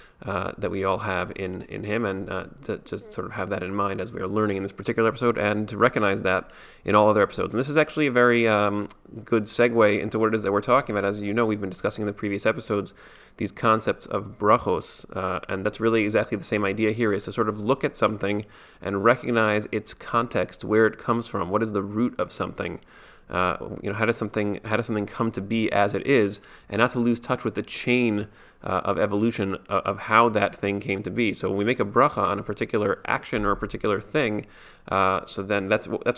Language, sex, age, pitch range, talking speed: English, male, 30-49, 100-115 Hz, 245 wpm